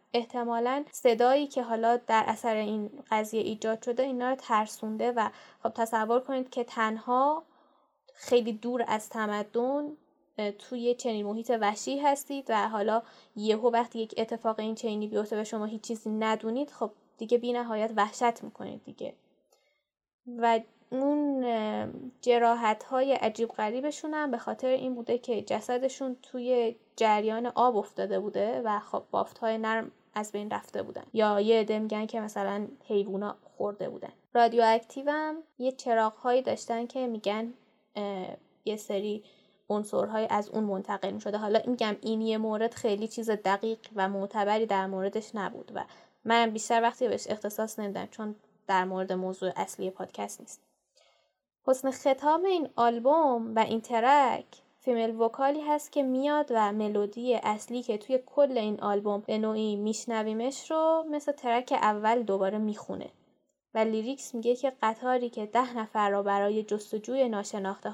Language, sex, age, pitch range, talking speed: Persian, female, 10-29, 210-250 Hz, 145 wpm